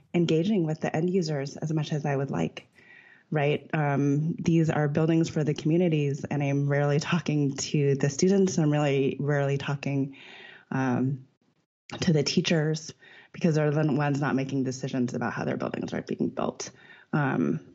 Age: 20-39